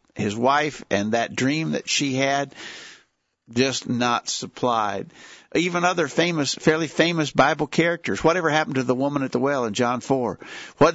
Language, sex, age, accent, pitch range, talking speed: English, male, 50-69, American, 125-155 Hz, 165 wpm